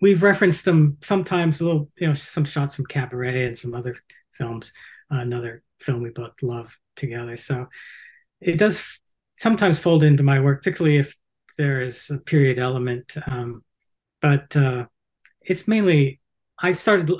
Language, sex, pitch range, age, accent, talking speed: English, male, 125-155 Hz, 40-59, American, 160 wpm